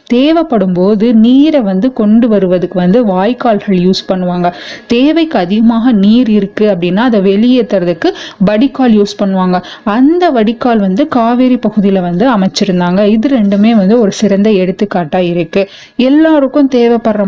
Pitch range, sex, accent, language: 195-250 Hz, female, native, Tamil